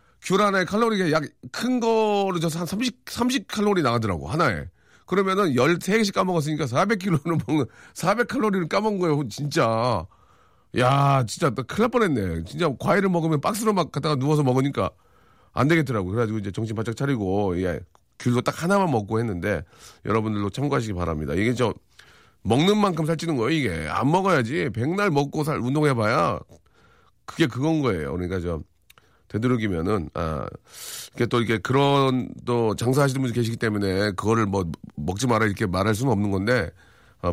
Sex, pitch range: male, 105-160 Hz